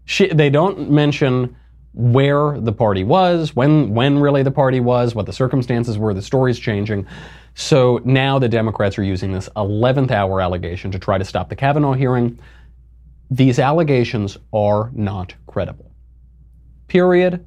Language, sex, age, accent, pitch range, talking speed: English, male, 30-49, American, 95-135 Hz, 150 wpm